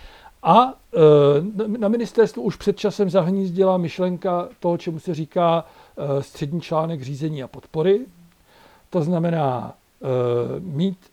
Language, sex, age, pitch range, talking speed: Czech, male, 60-79, 145-185 Hz, 110 wpm